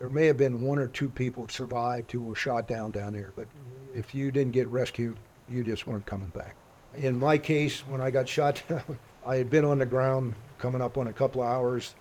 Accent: American